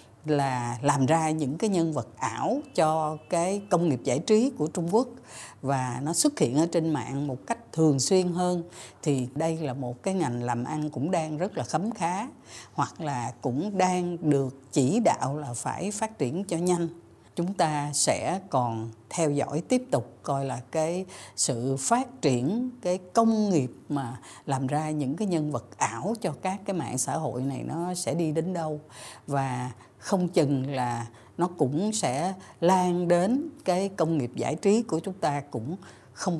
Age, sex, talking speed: 60-79, female, 185 wpm